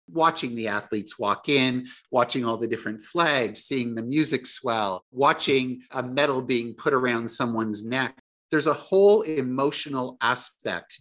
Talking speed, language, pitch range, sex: 145 wpm, English, 110-135 Hz, male